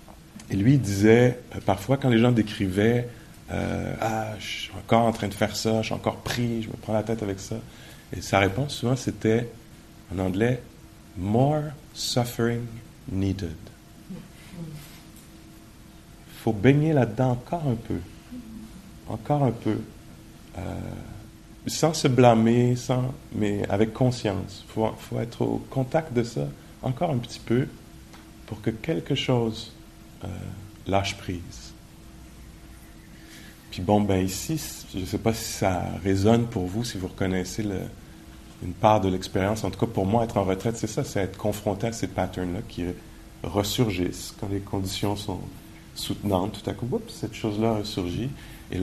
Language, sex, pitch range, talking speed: English, male, 95-120 Hz, 155 wpm